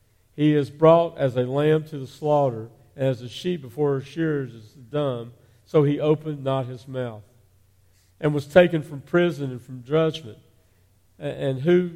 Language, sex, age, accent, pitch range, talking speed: English, male, 50-69, American, 110-145 Hz, 170 wpm